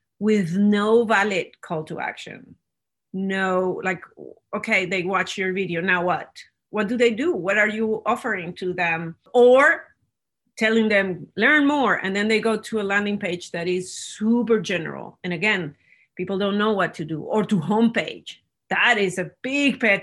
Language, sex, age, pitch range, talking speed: English, female, 30-49, 180-225 Hz, 175 wpm